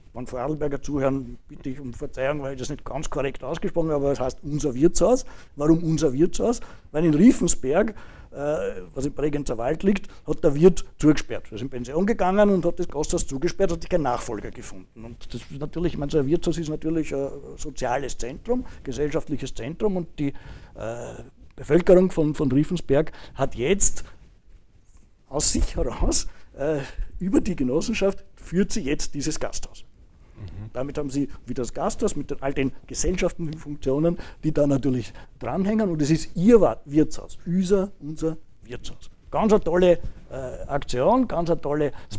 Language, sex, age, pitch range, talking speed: German, male, 60-79, 130-170 Hz, 170 wpm